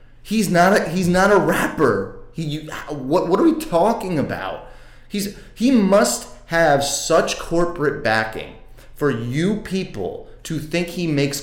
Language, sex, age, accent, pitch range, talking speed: English, male, 30-49, American, 120-175 Hz, 135 wpm